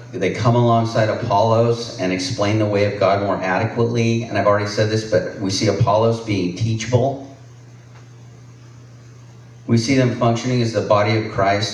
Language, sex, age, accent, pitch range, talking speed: English, male, 40-59, American, 105-120 Hz, 165 wpm